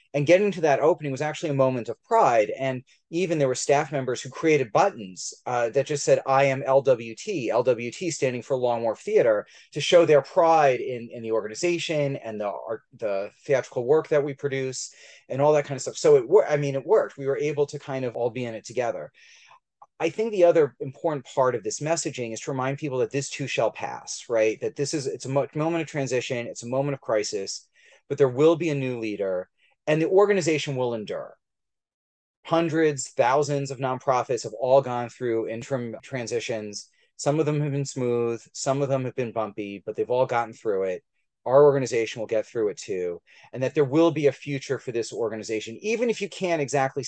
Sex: male